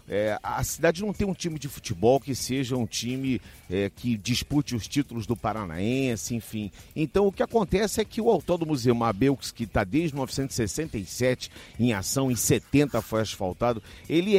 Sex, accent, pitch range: male, Brazilian, 115-185 Hz